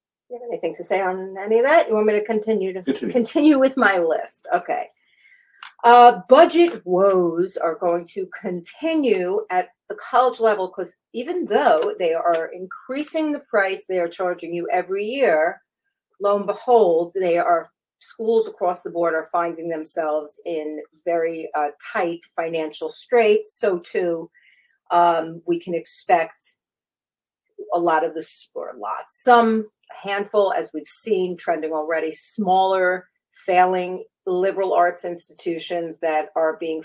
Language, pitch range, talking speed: English, 165-220 Hz, 145 wpm